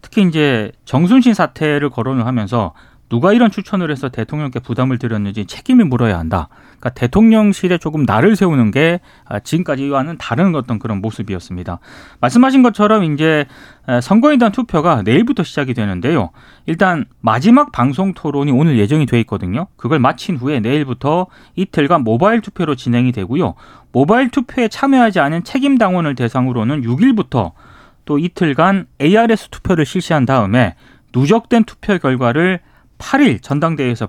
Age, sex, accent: 30-49, male, native